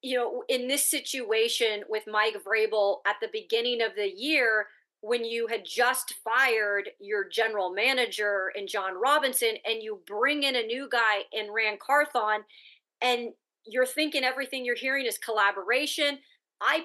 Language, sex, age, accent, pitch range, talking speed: English, female, 30-49, American, 230-320 Hz, 155 wpm